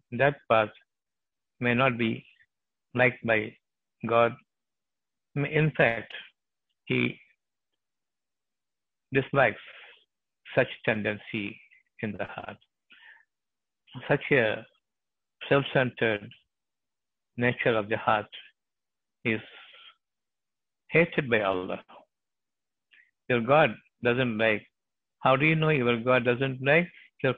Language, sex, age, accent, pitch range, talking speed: Tamil, male, 60-79, native, 115-145 Hz, 90 wpm